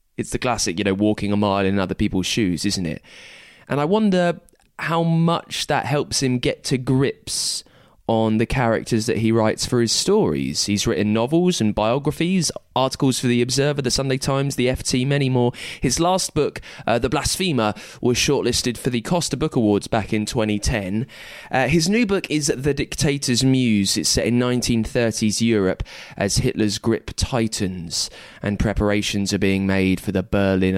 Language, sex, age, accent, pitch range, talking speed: English, male, 20-39, British, 100-135 Hz, 175 wpm